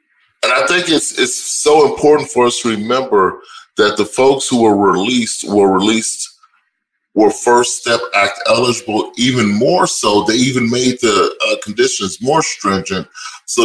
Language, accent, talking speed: English, American, 160 wpm